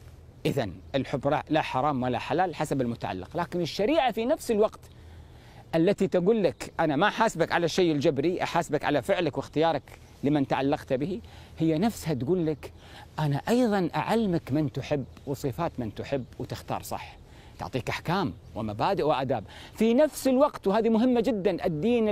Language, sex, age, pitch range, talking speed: Arabic, male, 40-59, 125-195 Hz, 145 wpm